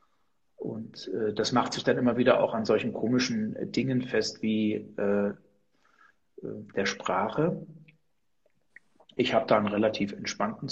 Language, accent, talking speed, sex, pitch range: German, German, 135 wpm, male, 110-150 Hz